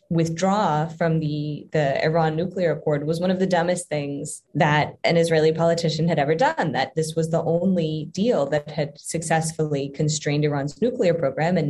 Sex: female